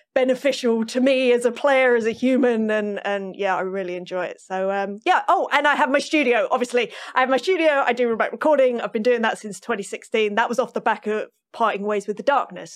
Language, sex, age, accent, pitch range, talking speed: English, female, 30-49, British, 200-255 Hz, 240 wpm